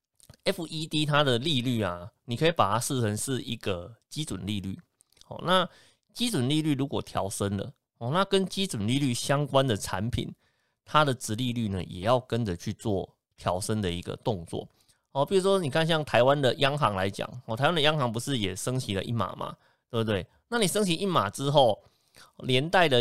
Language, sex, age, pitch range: Chinese, male, 30-49, 110-150 Hz